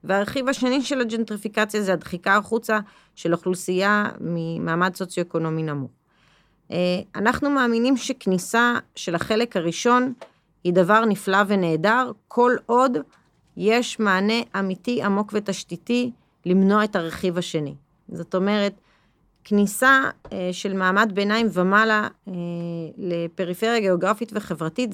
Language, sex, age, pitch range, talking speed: Hebrew, female, 30-49, 175-220 Hz, 105 wpm